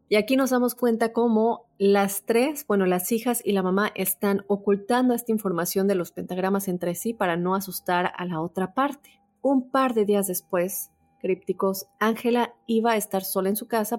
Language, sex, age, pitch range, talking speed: Spanish, female, 30-49, 185-230 Hz, 190 wpm